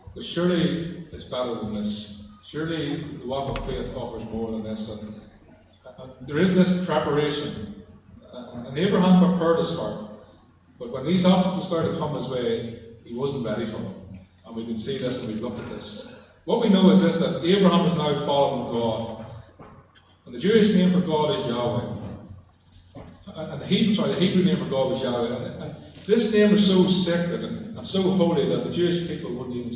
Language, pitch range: English, 115-175 Hz